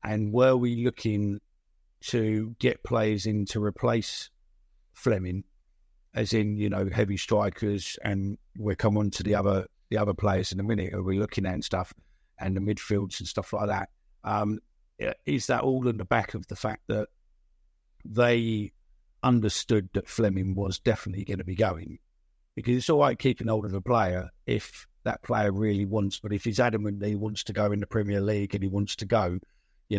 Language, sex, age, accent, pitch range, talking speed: English, male, 50-69, British, 100-115 Hz, 195 wpm